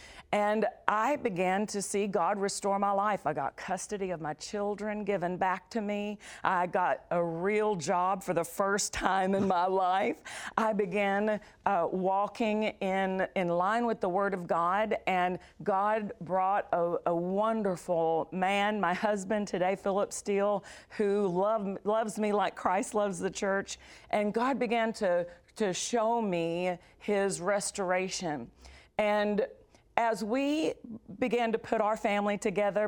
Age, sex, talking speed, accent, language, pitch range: 50-69, female, 150 wpm, American, English, 180-210 Hz